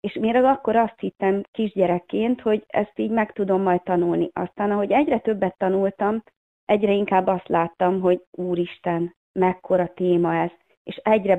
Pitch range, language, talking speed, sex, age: 185-225 Hz, Hungarian, 160 wpm, female, 30-49